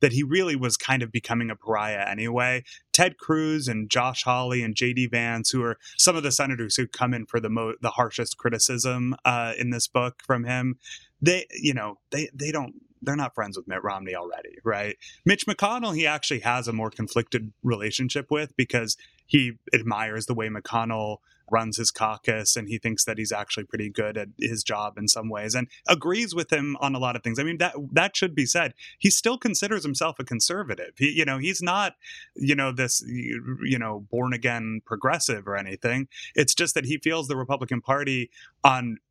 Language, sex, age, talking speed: English, male, 20-39, 205 wpm